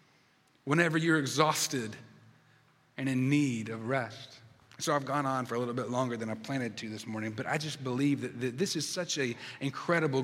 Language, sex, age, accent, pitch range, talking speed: English, male, 30-49, American, 120-150 Hz, 200 wpm